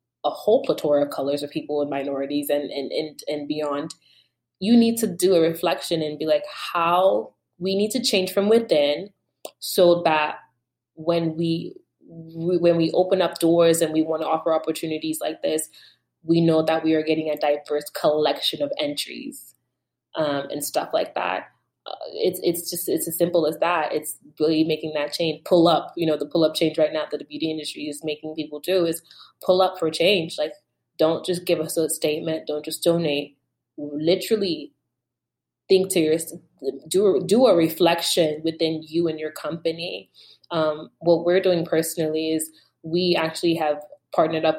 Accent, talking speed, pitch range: American, 185 wpm, 155-175 Hz